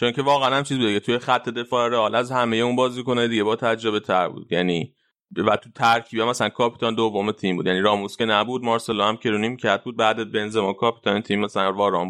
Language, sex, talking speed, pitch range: Persian, male, 230 wpm, 105-125 Hz